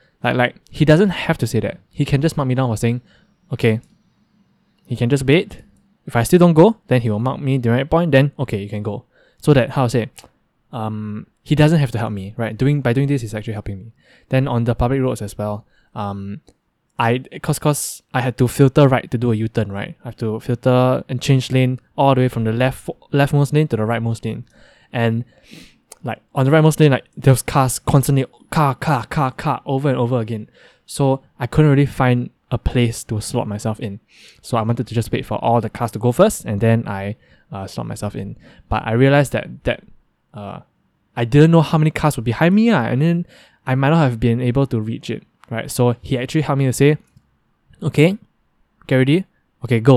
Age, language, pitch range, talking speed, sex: 10-29, English, 115-145 Hz, 230 wpm, male